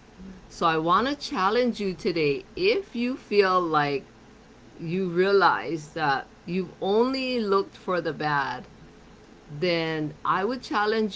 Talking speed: 130 wpm